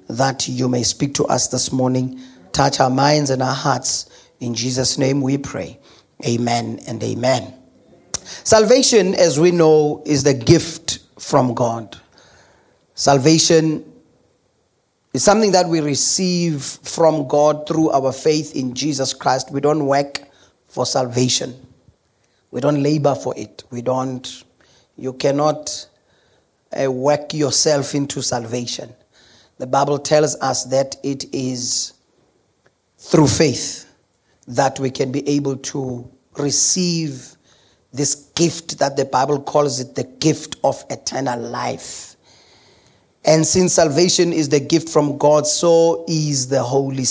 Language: English